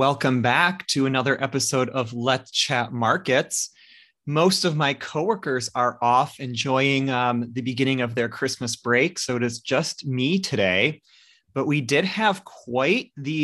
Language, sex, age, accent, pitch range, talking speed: English, male, 30-49, American, 120-145 Hz, 155 wpm